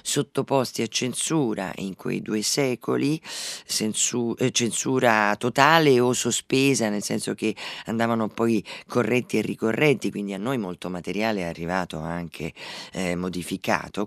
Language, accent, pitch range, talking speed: Italian, native, 95-130 Hz, 125 wpm